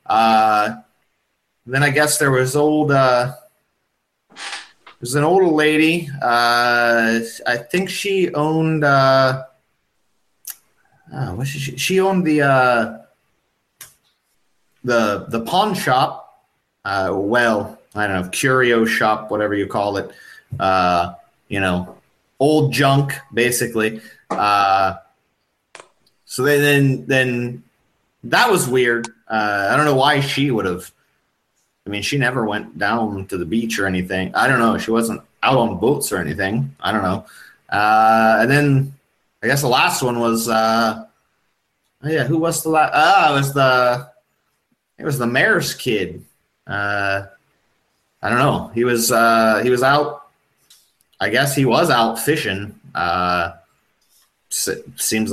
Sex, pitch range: male, 105-140 Hz